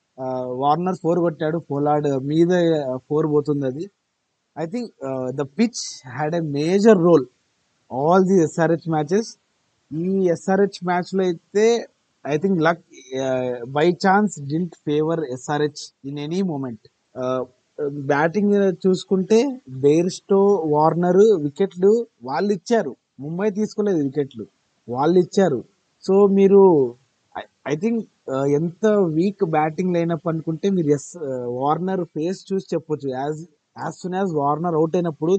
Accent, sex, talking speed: native, male, 120 wpm